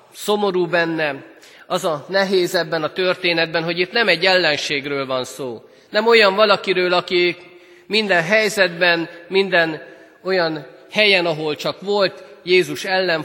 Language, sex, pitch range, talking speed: Hungarian, male, 135-180 Hz, 130 wpm